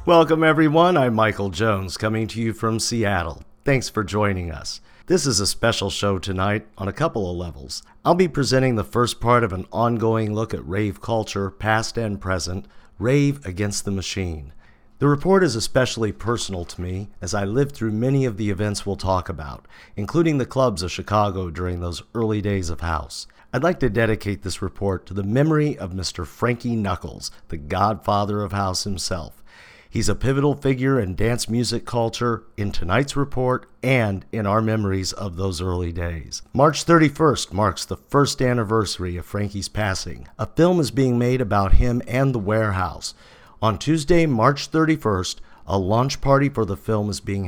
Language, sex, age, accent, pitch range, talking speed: English, male, 50-69, American, 95-125 Hz, 180 wpm